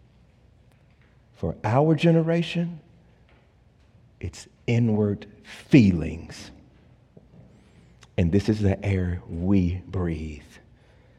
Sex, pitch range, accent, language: male, 100-145 Hz, American, English